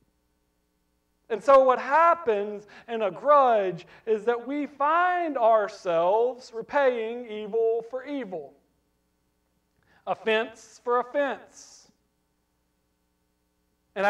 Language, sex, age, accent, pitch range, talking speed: English, male, 40-59, American, 195-275 Hz, 85 wpm